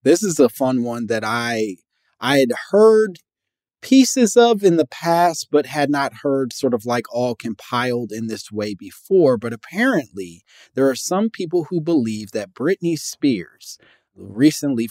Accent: American